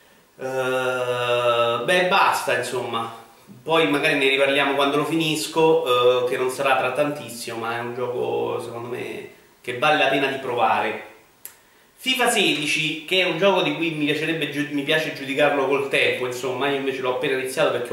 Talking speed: 175 wpm